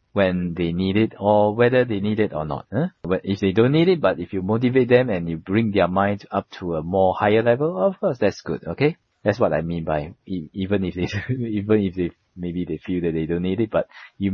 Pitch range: 90-125 Hz